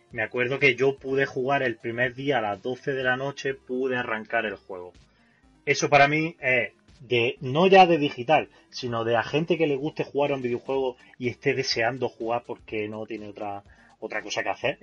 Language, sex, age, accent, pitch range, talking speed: Spanish, male, 30-49, Spanish, 110-140 Hz, 205 wpm